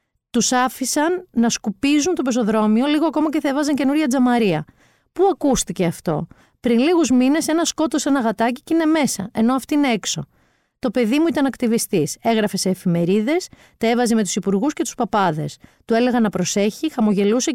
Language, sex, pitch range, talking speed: Greek, female, 205-280 Hz, 175 wpm